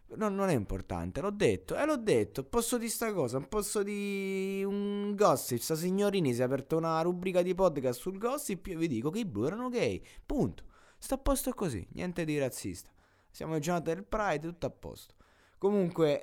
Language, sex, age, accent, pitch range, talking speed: Italian, male, 20-39, native, 105-170 Hz, 205 wpm